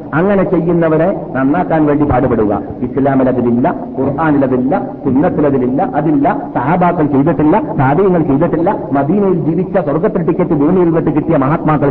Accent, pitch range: native, 130-190 Hz